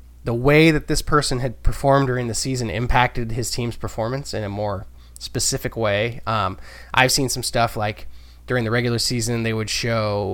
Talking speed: 185 wpm